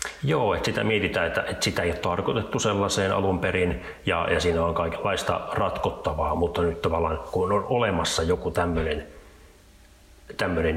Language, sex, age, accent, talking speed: Finnish, male, 30-49, native, 155 wpm